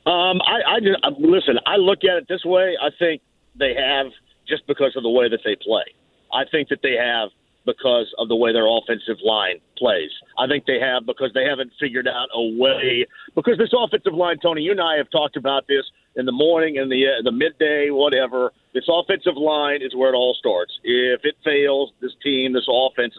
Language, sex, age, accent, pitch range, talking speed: English, male, 50-69, American, 135-195 Hz, 215 wpm